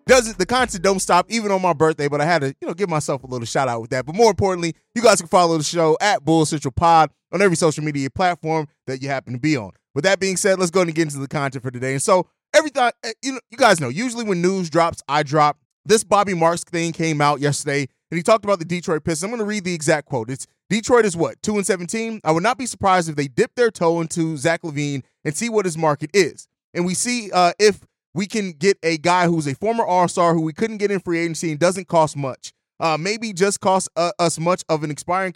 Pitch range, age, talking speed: 150-195 Hz, 20-39, 270 wpm